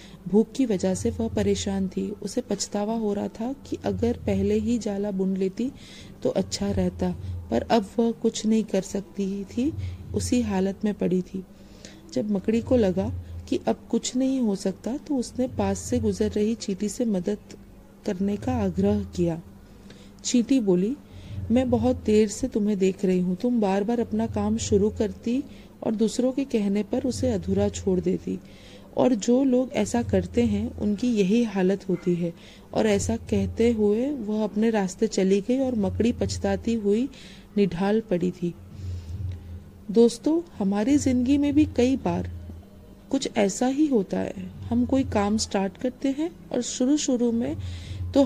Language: Hindi